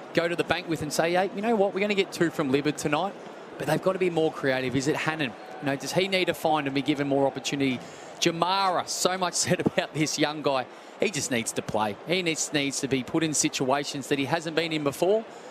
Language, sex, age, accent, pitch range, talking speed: English, male, 20-39, Australian, 140-175 Hz, 265 wpm